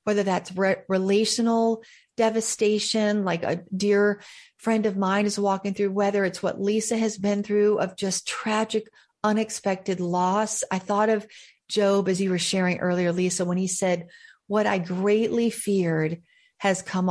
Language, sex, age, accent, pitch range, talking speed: English, female, 40-59, American, 195-230 Hz, 155 wpm